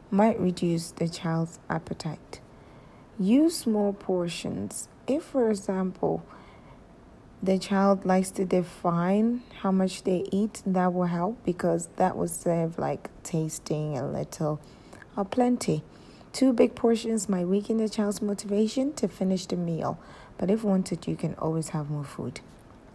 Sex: female